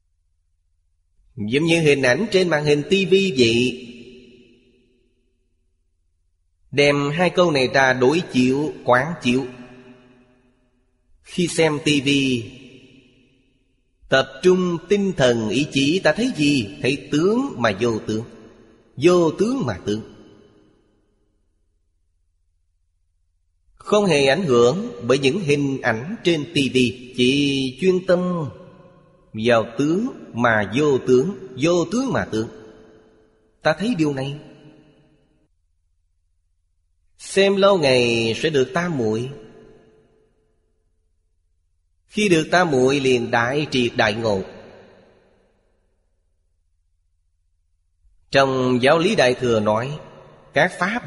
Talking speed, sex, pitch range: 105 wpm, male, 85-145 Hz